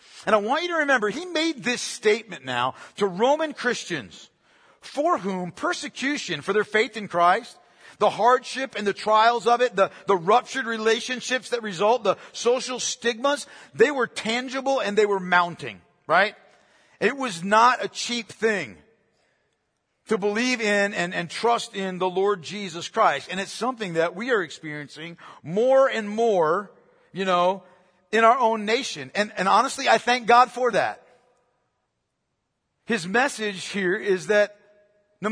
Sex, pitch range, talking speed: male, 200-255 Hz, 160 wpm